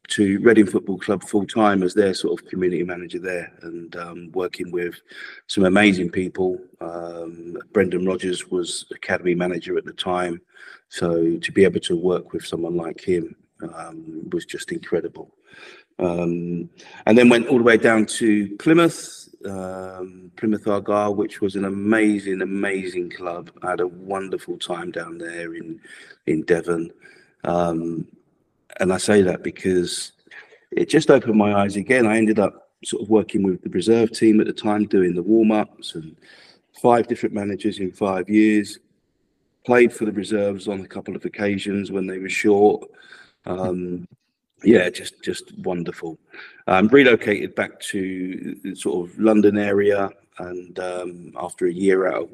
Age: 40-59